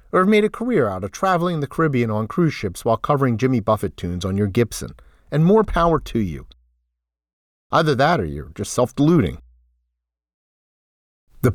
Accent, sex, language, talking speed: American, male, English, 170 wpm